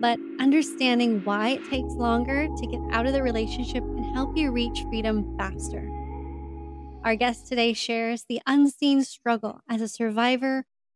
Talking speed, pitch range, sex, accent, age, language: 155 wpm, 220-275 Hz, female, American, 30-49, English